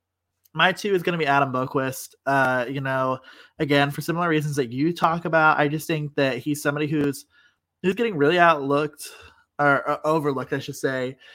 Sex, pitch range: male, 135-160 Hz